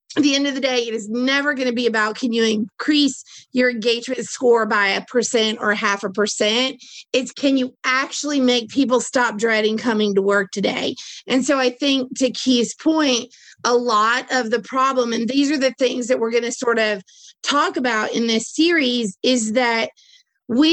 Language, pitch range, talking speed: English, 225-270 Hz, 200 wpm